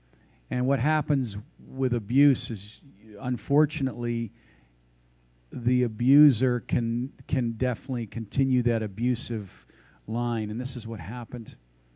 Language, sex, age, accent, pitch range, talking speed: English, male, 50-69, American, 110-135 Hz, 105 wpm